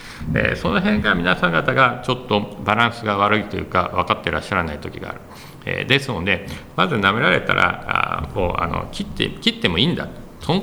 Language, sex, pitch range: Japanese, male, 85-115 Hz